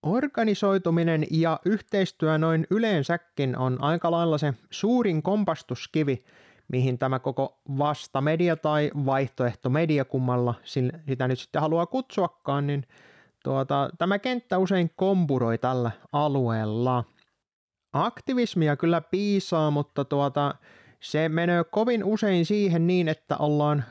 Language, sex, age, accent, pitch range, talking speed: Finnish, male, 20-39, native, 130-175 Hz, 110 wpm